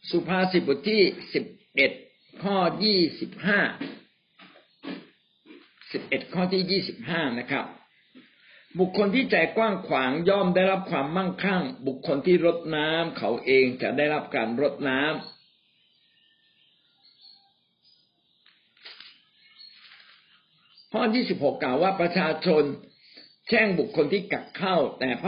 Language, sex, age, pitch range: Thai, male, 60-79, 145-190 Hz